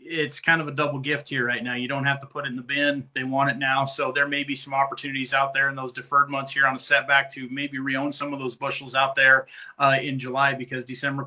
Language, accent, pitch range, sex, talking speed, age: English, American, 130-145 Hz, male, 275 wpm, 30-49